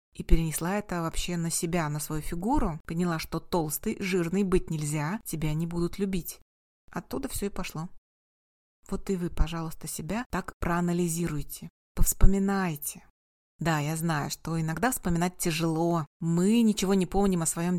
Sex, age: female, 30-49